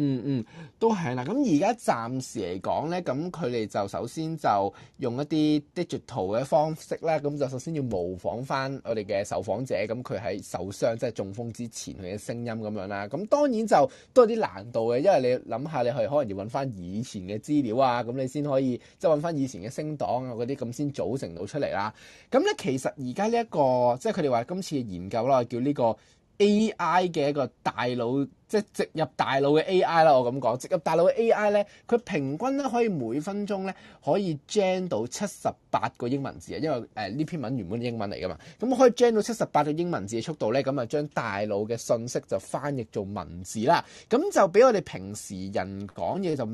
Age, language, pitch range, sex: 20-39, Chinese, 120-175 Hz, male